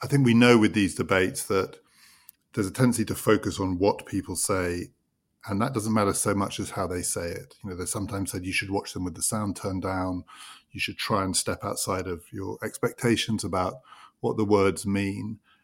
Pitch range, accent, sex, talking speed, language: 95-115 Hz, British, male, 215 wpm, English